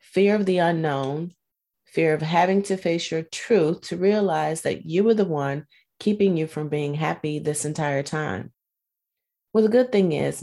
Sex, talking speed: female, 180 wpm